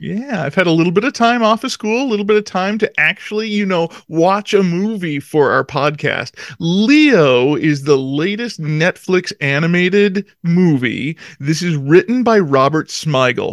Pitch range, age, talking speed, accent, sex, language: 150-205 Hz, 40-59, 175 wpm, American, male, English